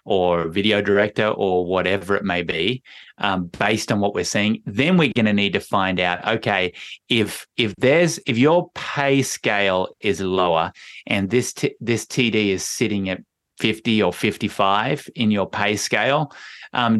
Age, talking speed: 30-49, 175 wpm